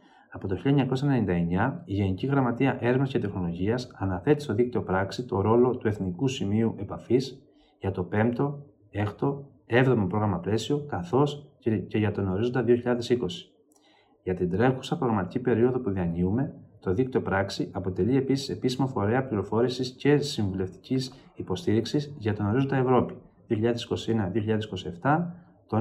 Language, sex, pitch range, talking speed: Greek, male, 100-130 Hz, 130 wpm